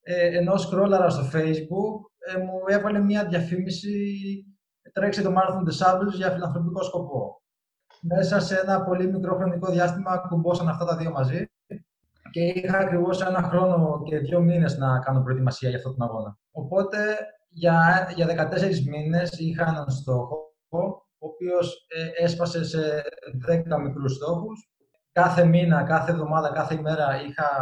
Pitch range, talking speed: 145-185 Hz, 140 wpm